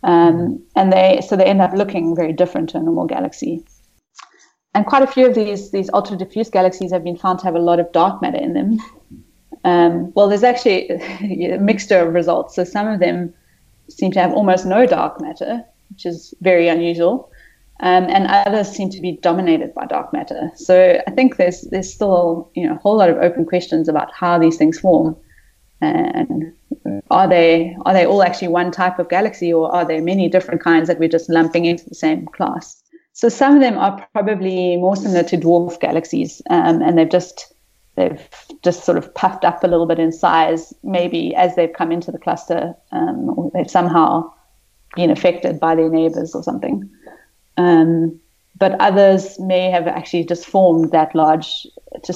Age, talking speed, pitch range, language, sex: 20-39, 195 wpm, 170-195 Hz, English, female